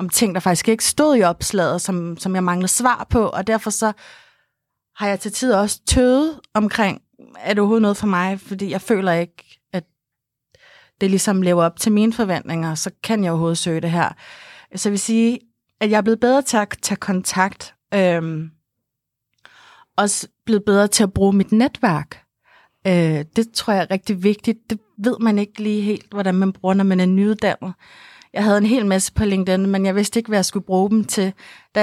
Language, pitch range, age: Danish, 185-225 Hz, 30-49